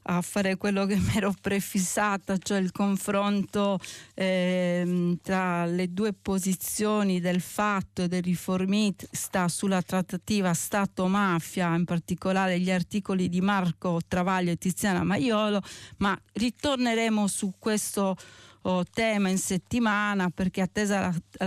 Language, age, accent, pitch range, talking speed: Italian, 40-59, native, 180-205 Hz, 120 wpm